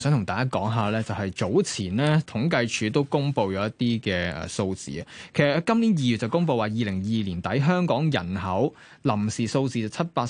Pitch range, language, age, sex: 100-145 Hz, Chinese, 20-39, male